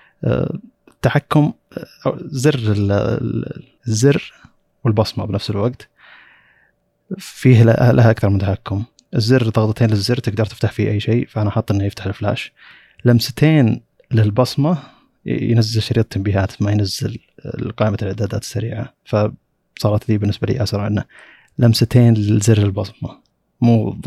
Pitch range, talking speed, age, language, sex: 105-125 Hz, 110 wpm, 30-49, Arabic, male